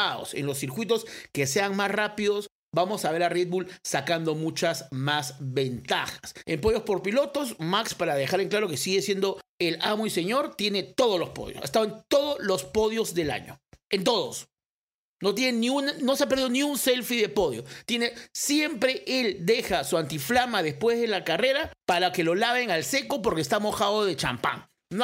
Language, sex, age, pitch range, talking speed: Spanish, male, 50-69, 160-235 Hz, 185 wpm